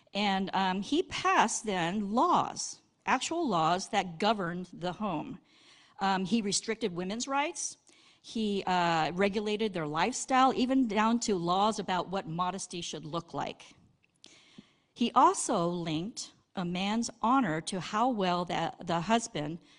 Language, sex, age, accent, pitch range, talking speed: English, female, 50-69, American, 175-230 Hz, 130 wpm